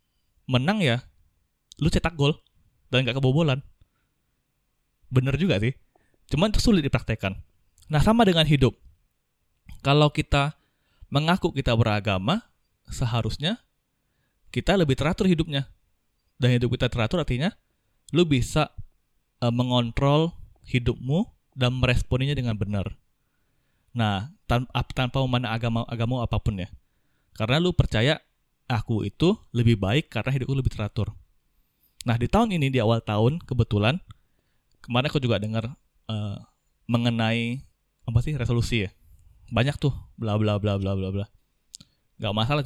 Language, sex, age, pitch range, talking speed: Indonesian, male, 20-39, 110-135 Hz, 125 wpm